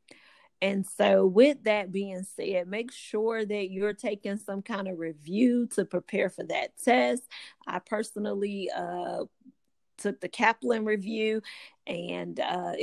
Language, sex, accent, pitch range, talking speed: English, female, American, 185-225 Hz, 135 wpm